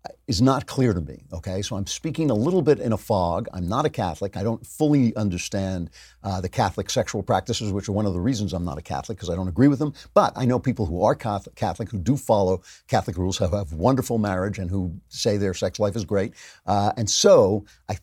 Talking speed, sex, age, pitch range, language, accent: 245 wpm, male, 50-69, 95-115 Hz, English, American